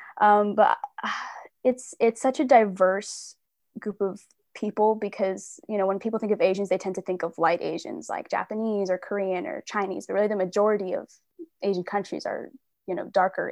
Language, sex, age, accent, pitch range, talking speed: English, female, 10-29, American, 190-225 Hz, 190 wpm